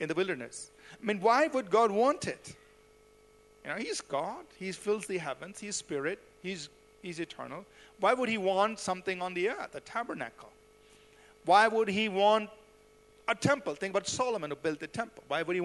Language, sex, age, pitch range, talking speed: English, male, 50-69, 180-265 Hz, 190 wpm